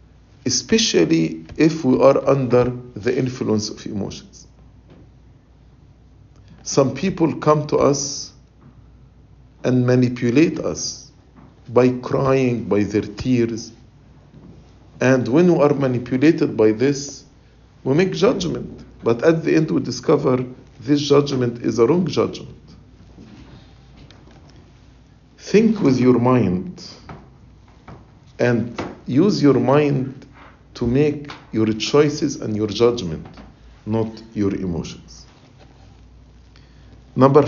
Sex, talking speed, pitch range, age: male, 100 wpm, 115-145 Hz, 50-69